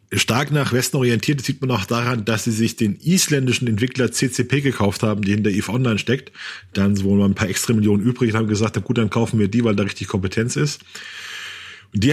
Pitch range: 110-140 Hz